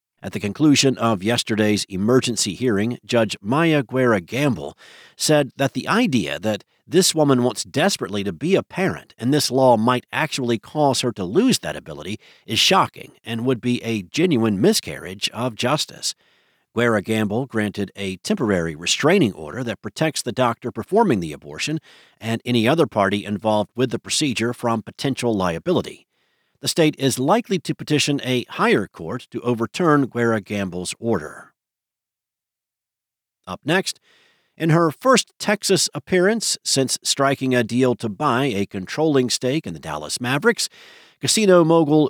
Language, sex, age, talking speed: English, male, 50-69, 150 wpm